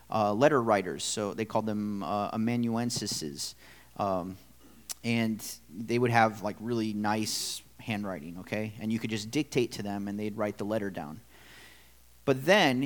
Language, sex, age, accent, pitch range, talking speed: English, male, 30-49, American, 105-135 Hz, 160 wpm